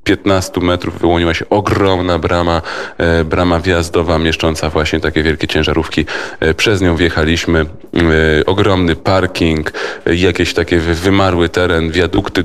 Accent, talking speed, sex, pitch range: native, 110 wpm, male, 80-90 Hz